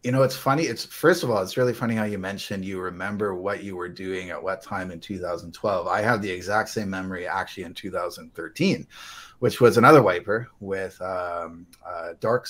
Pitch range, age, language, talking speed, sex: 95-125 Hz, 30-49, English, 200 wpm, male